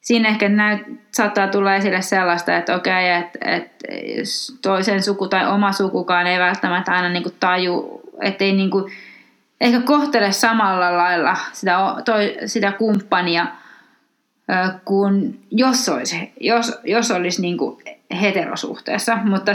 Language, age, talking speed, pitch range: Finnish, 20-39, 135 wpm, 185-230 Hz